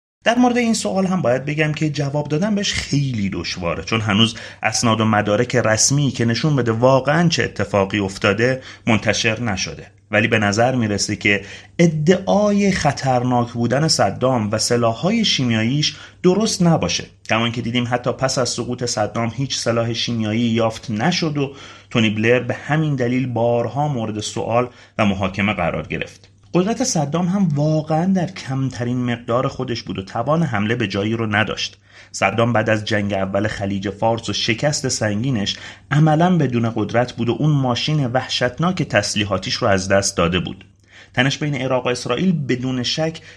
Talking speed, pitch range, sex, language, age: 160 wpm, 105-145 Hz, male, Persian, 30-49